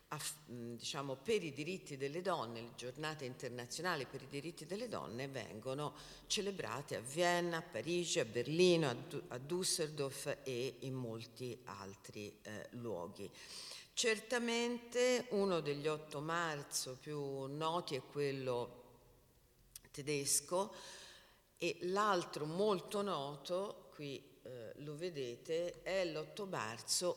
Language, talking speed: Italian, 120 wpm